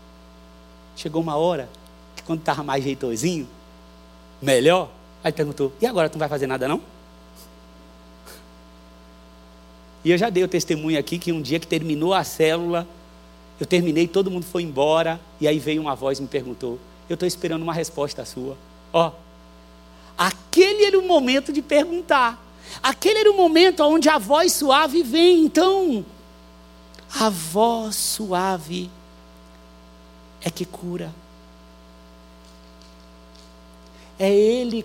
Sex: male